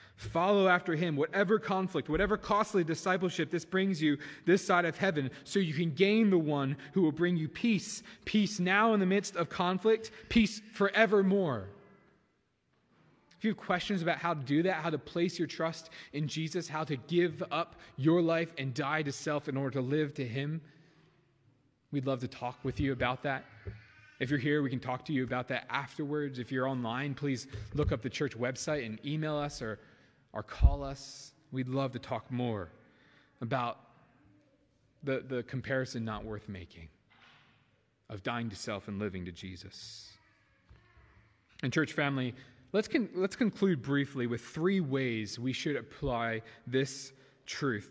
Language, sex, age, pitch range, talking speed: English, male, 20-39, 115-170 Hz, 170 wpm